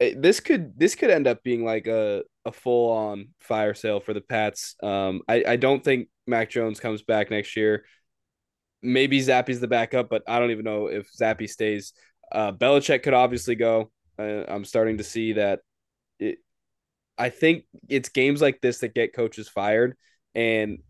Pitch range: 105-125 Hz